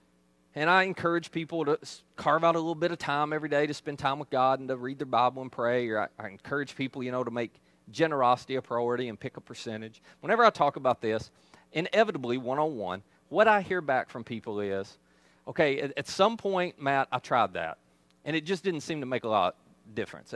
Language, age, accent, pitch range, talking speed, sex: English, 30-49, American, 105-155 Hz, 230 wpm, male